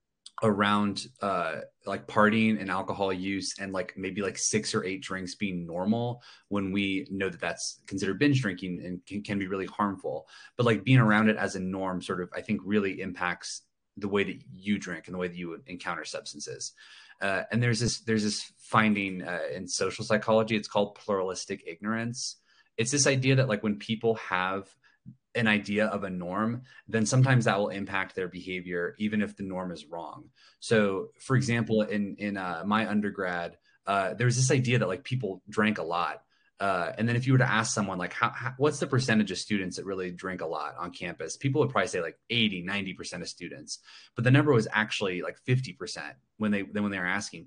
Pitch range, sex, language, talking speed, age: 95-115 Hz, male, English, 205 wpm, 30-49